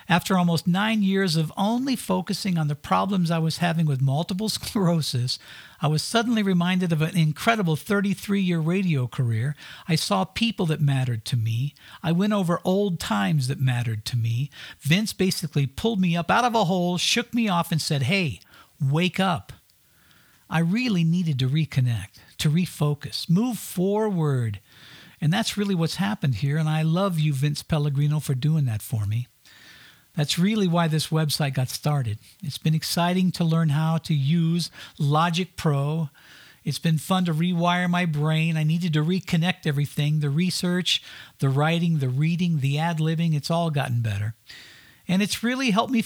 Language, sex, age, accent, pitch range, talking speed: English, male, 60-79, American, 150-190 Hz, 170 wpm